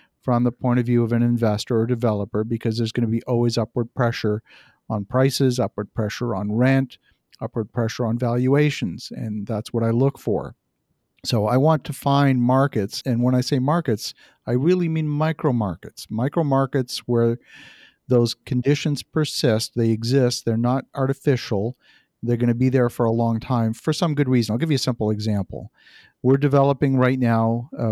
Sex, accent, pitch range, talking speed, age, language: male, American, 115-135 Hz, 185 wpm, 50-69, English